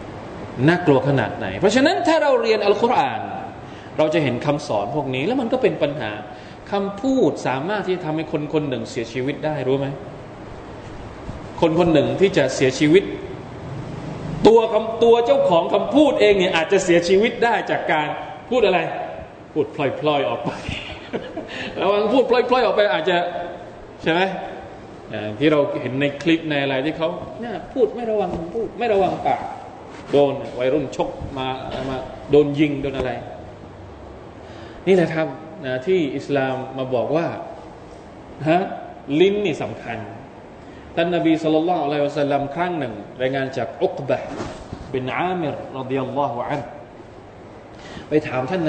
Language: Thai